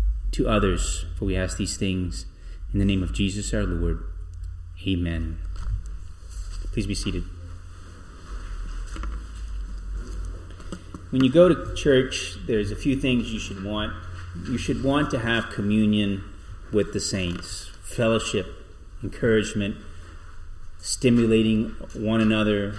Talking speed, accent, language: 115 wpm, American, English